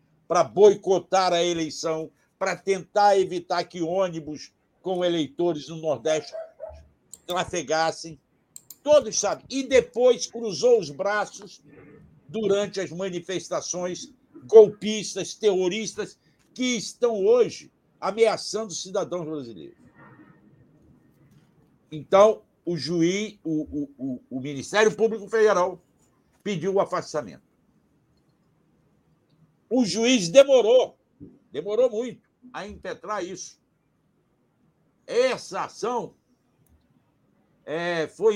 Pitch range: 170-225 Hz